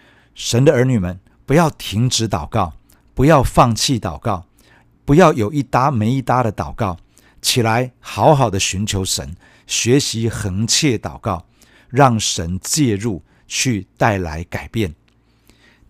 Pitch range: 100-125 Hz